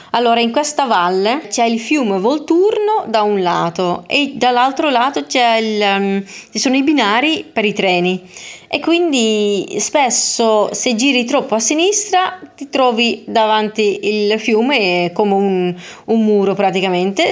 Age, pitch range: 30-49, 190-250 Hz